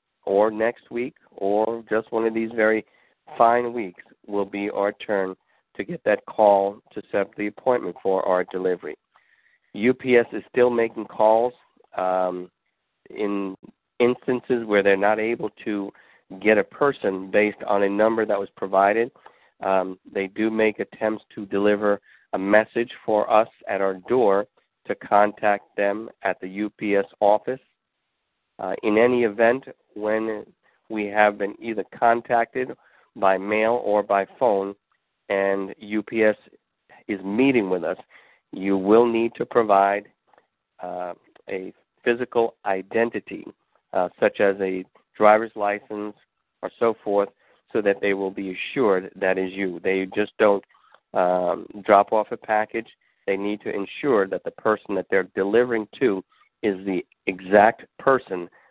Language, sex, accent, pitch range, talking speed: English, male, American, 100-115 Hz, 145 wpm